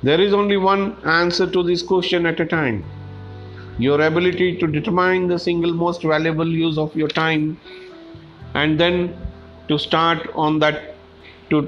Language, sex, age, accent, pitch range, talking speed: English, male, 50-69, Indian, 125-175 Hz, 155 wpm